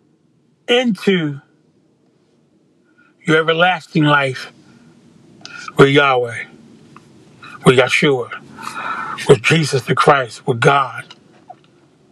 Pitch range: 140-190 Hz